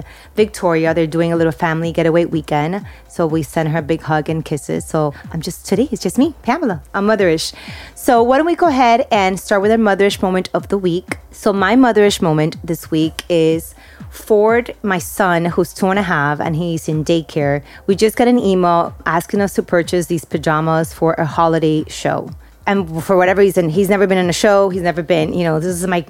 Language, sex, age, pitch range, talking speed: English, female, 30-49, 165-205 Hz, 215 wpm